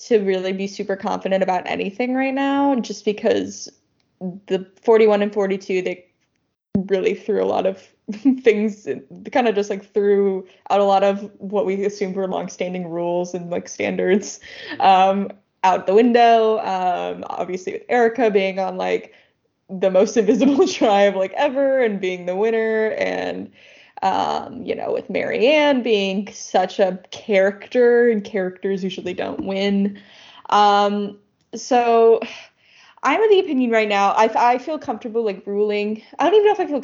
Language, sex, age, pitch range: English, female, 10-29, 195-230 Hz